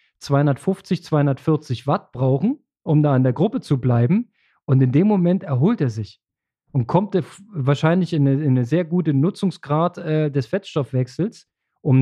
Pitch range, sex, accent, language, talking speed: 140-170 Hz, male, German, German, 165 wpm